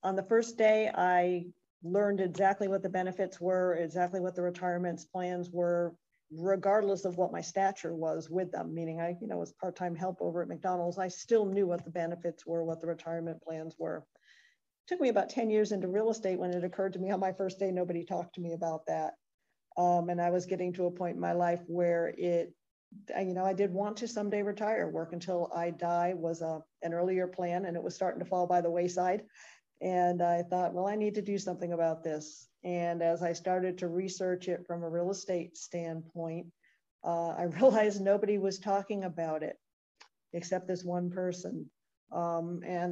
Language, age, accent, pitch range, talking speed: English, 50-69, American, 170-190 Hz, 205 wpm